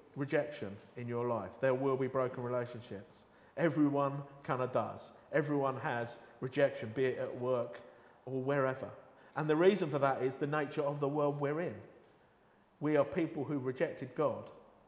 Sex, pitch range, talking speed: male, 125-145 Hz, 165 wpm